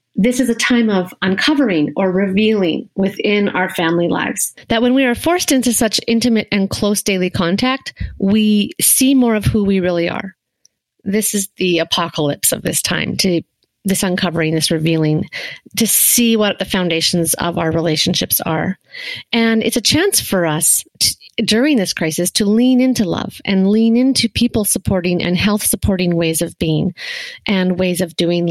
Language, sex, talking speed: English, female, 170 wpm